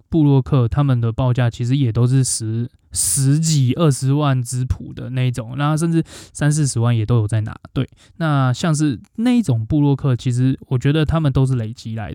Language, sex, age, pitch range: Chinese, male, 10-29, 120-145 Hz